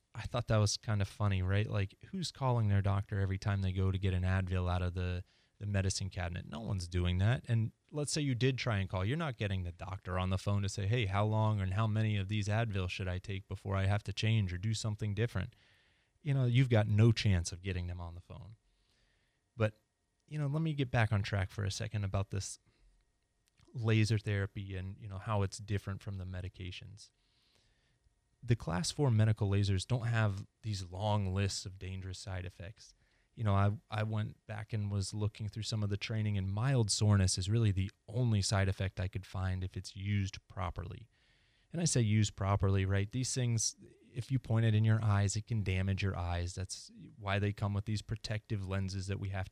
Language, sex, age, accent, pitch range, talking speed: English, male, 30-49, American, 95-115 Hz, 220 wpm